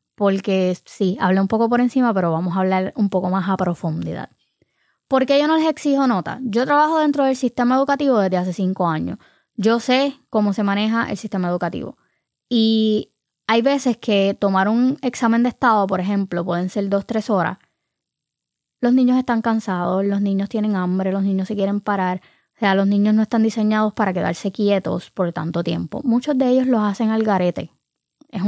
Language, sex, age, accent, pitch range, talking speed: Spanish, female, 20-39, American, 190-250 Hz, 190 wpm